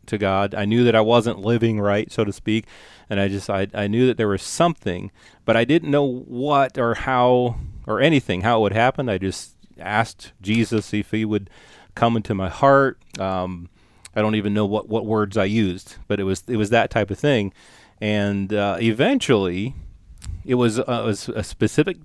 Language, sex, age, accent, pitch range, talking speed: English, male, 30-49, American, 100-125 Hz, 205 wpm